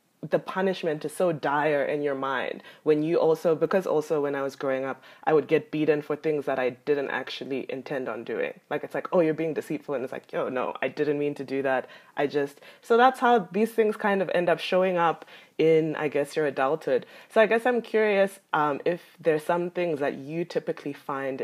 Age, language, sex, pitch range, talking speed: 20-39, English, female, 135-175 Hz, 245 wpm